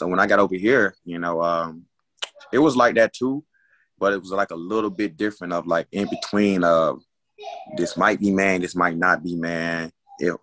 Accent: American